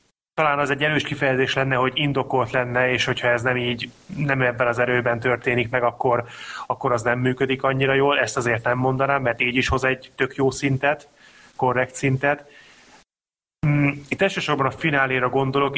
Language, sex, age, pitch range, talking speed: Hungarian, male, 30-49, 120-140 Hz, 175 wpm